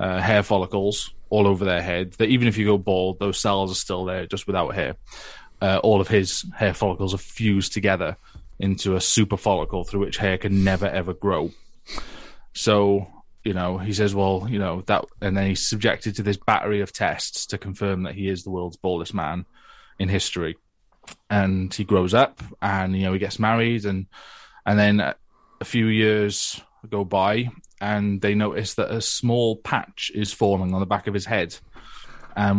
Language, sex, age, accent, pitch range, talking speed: English, male, 20-39, British, 95-105 Hz, 190 wpm